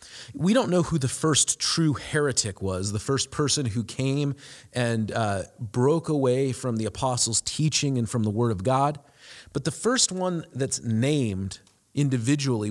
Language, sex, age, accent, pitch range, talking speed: English, male, 30-49, American, 110-145 Hz, 165 wpm